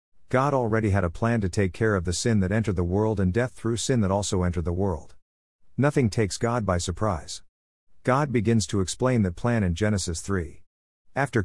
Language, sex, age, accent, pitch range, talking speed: English, male, 50-69, American, 90-115 Hz, 205 wpm